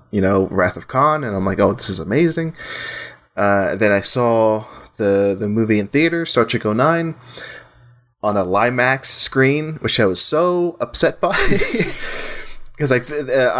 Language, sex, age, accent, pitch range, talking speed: English, male, 20-39, American, 105-135 Hz, 165 wpm